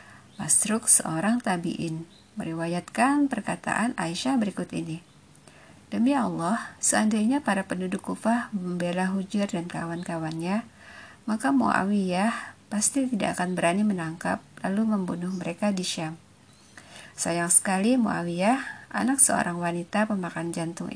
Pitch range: 175-230 Hz